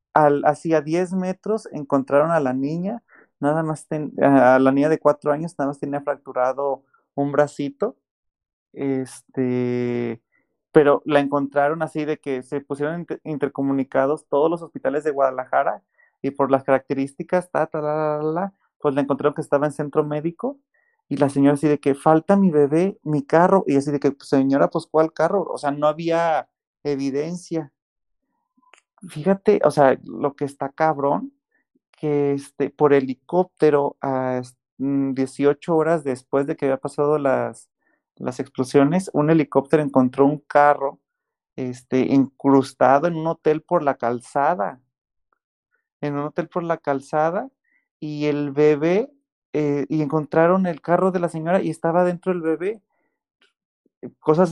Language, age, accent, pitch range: Spanish, 30-49, Mexican, 140-165 Hz